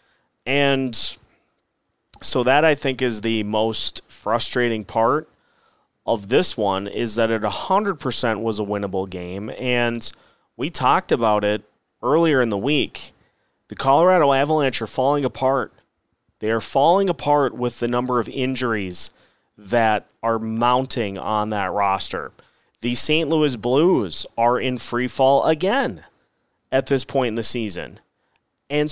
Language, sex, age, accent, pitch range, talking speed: English, male, 30-49, American, 115-145 Hz, 140 wpm